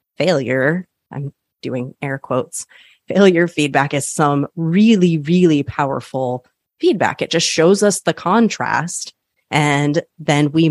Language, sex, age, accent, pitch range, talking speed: English, female, 30-49, American, 135-170 Hz, 125 wpm